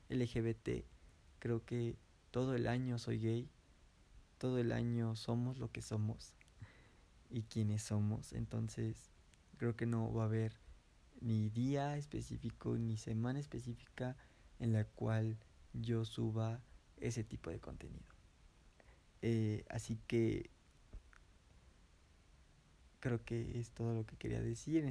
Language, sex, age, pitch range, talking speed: Spanish, male, 20-39, 100-120 Hz, 125 wpm